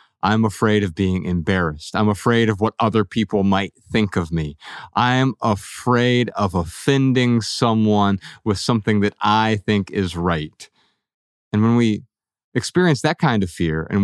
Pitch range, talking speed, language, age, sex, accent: 100-130 Hz, 155 wpm, English, 30-49, male, American